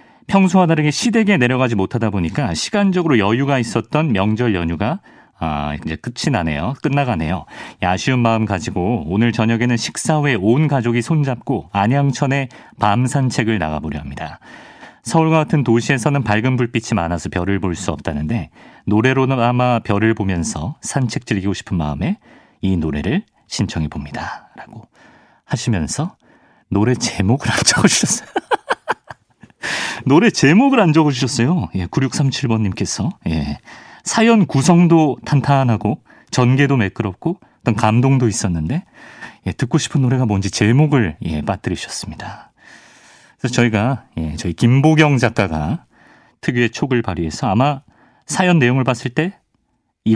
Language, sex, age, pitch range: Korean, male, 40-59, 100-140 Hz